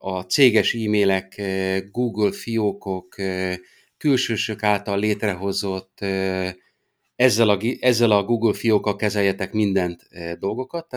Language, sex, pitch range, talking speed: Hungarian, male, 95-120 Hz, 90 wpm